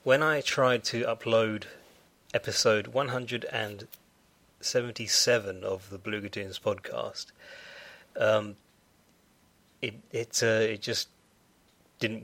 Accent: British